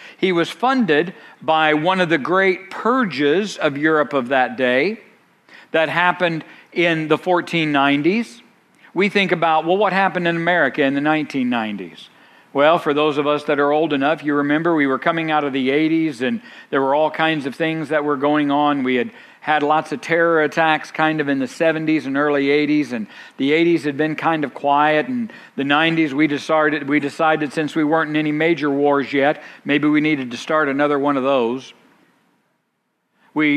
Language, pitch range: English, 145-170 Hz